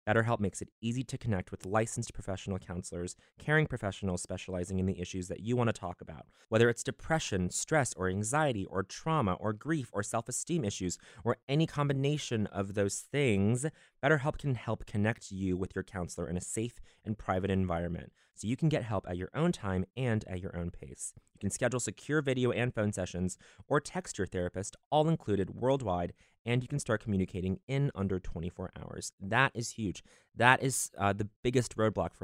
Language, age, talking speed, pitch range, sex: English, 20-39, 190 wpm, 90-120 Hz, male